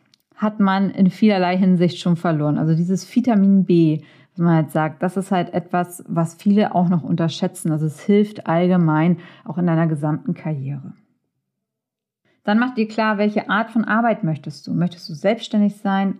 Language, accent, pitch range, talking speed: German, German, 170-215 Hz, 175 wpm